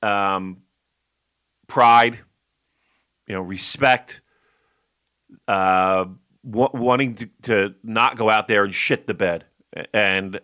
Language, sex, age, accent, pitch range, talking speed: English, male, 40-59, American, 95-120 Hz, 105 wpm